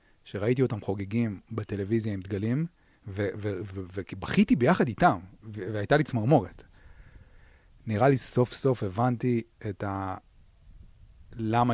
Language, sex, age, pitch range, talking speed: Hebrew, male, 30-49, 95-120 Hz, 105 wpm